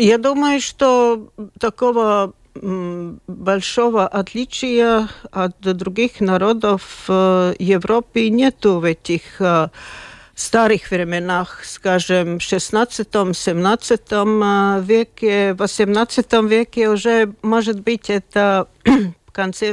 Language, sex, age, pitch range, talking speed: Russian, female, 50-69, 185-215 Hz, 90 wpm